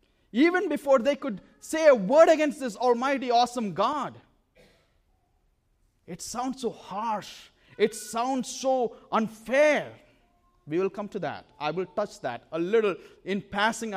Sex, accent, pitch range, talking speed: male, Indian, 175-255 Hz, 140 wpm